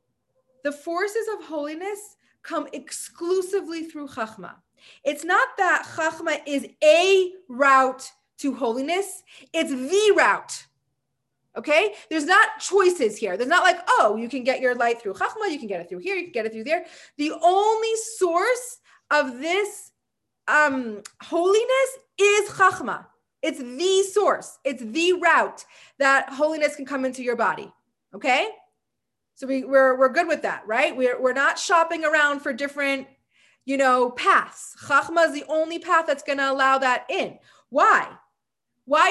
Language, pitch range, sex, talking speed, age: English, 275-370 Hz, female, 155 wpm, 30-49